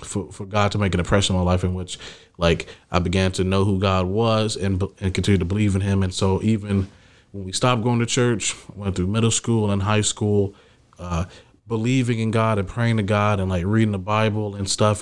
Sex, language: male, English